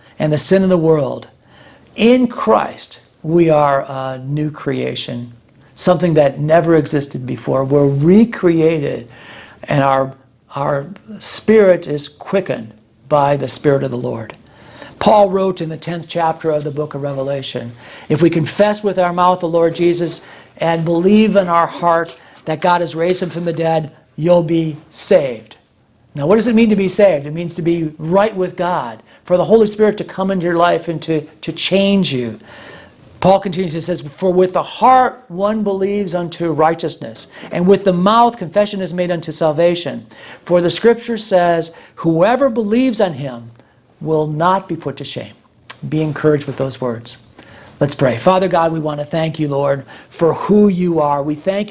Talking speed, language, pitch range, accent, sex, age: 180 wpm, English, 145-185 Hz, American, male, 50-69